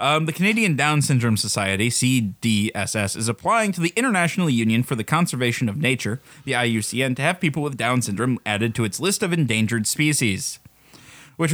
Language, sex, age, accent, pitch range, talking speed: English, male, 20-39, American, 110-155 Hz, 175 wpm